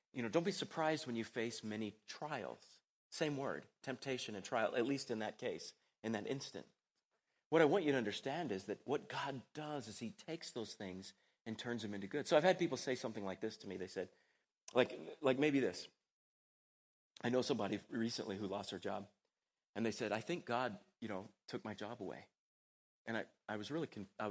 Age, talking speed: 40-59, 210 wpm